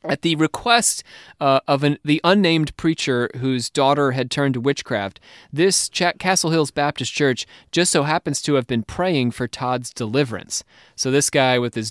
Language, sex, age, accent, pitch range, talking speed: English, male, 30-49, American, 120-150 Hz, 180 wpm